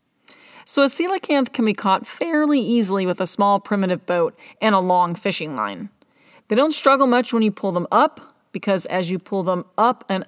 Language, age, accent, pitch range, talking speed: English, 30-49, American, 185-255 Hz, 200 wpm